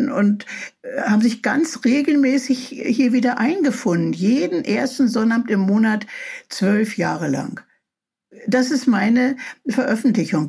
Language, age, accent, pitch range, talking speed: German, 60-79, German, 205-255 Hz, 115 wpm